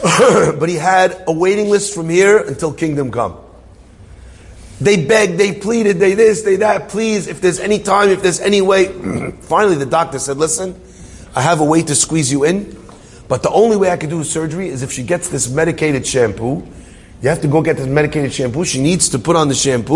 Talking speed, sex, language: 215 wpm, male, English